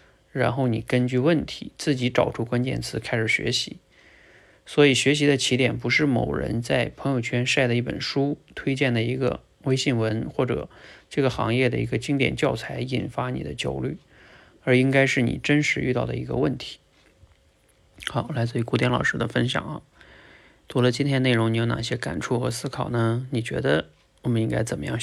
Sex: male